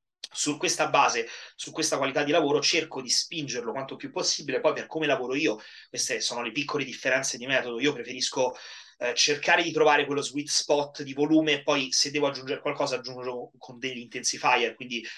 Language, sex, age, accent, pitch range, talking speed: Italian, male, 30-49, native, 125-150 Hz, 185 wpm